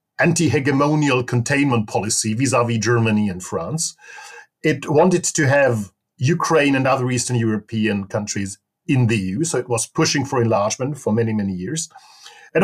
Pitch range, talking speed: 115-160 Hz, 145 wpm